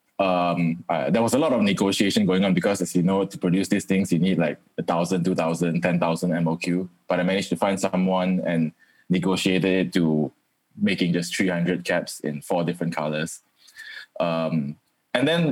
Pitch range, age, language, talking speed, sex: 85-95 Hz, 20-39, English, 185 wpm, male